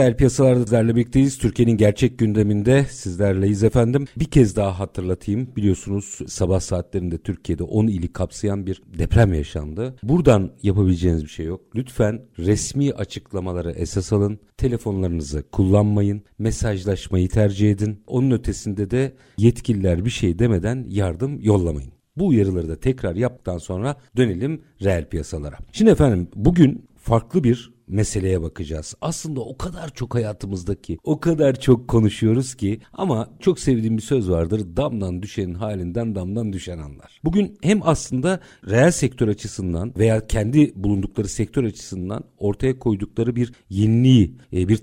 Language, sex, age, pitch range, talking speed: Turkish, male, 50-69, 95-125 Hz, 135 wpm